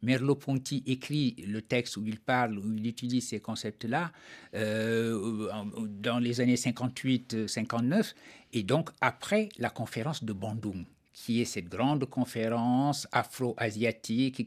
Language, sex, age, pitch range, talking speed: French, male, 60-79, 110-130 Hz, 125 wpm